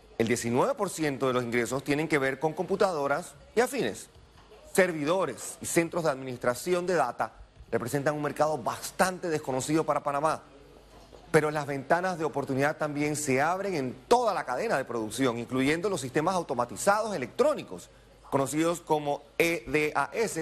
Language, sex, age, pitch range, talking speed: Spanish, male, 30-49, 135-185 Hz, 140 wpm